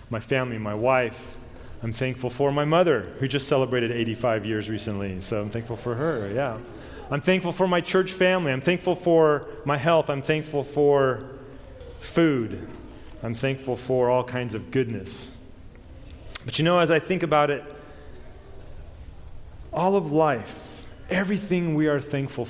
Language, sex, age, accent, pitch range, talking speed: English, male, 30-49, American, 105-160 Hz, 155 wpm